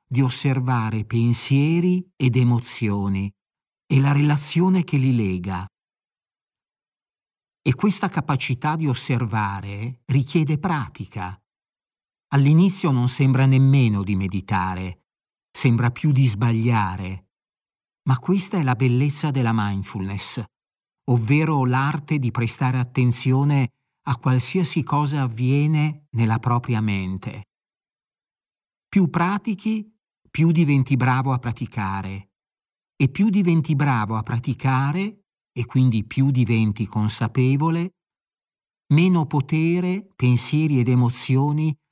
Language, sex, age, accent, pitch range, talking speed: Italian, male, 50-69, native, 115-150 Hz, 100 wpm